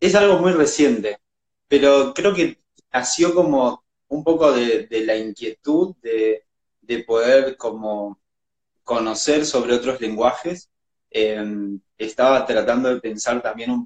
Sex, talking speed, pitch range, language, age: male, 130 wpm, 115-150 Hz, Spanish, 20-39